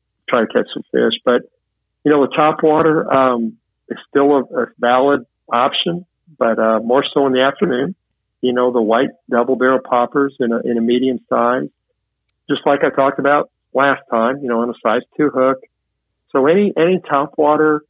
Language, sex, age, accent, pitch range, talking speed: English, male, 50-69, American, 110-135 Hz, 190 wpm